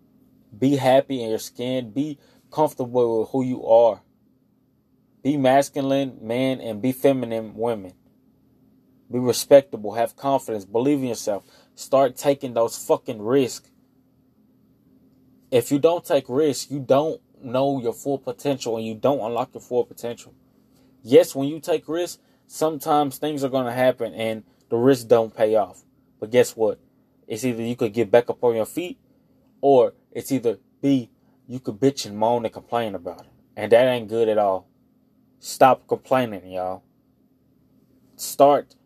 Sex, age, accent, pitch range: male, 20-39, American, 115-135 Hz